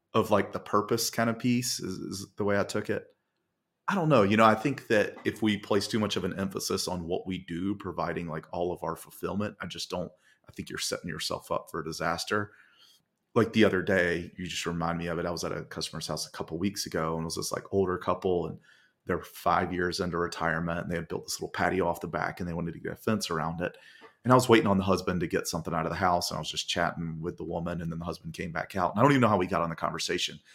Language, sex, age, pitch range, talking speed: English, male, 30-49, 85-100 Hz, 285 wpm